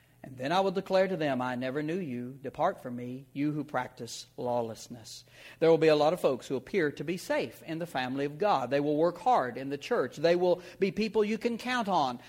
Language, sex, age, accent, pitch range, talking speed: English, male, 60-79, American, 135-205 Hz, 245 wpm